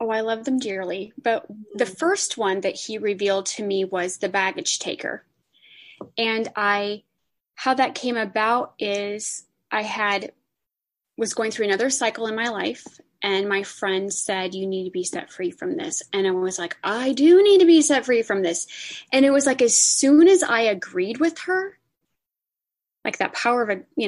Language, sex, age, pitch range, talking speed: English, female, 20-39, 190-245 Hz, 190 wpm